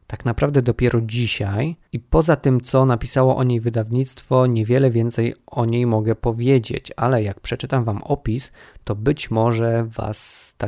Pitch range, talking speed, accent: 110-130 Hz, 155 wpm, native